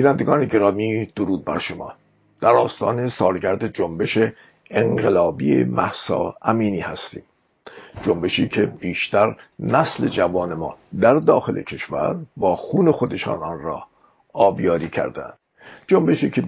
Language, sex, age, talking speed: Persian, male, 50-69, 115 wpm